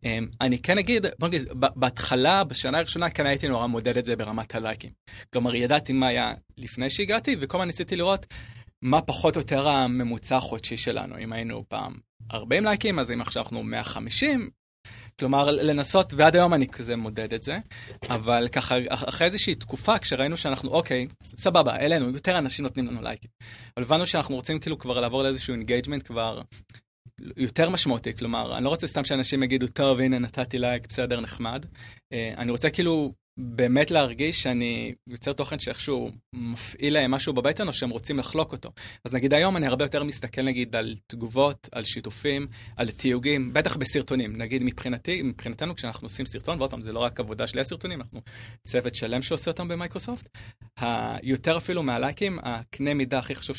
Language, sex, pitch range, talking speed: Hebrew, male, 120-150 Hz, 175 wpm